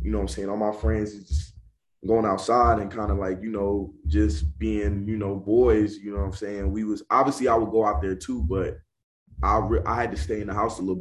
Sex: male